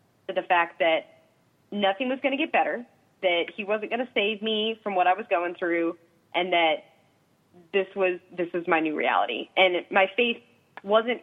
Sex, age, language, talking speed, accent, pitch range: female, 20-39, English, 185 wpm, American, 170-210 Hz